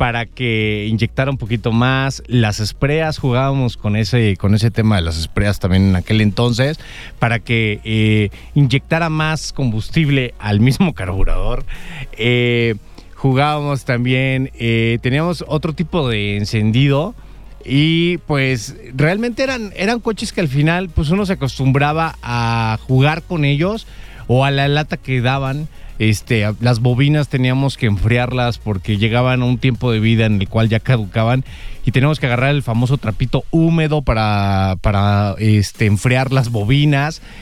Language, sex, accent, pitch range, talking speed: English, male, Mexican, 115-150 Hz, 150 wpm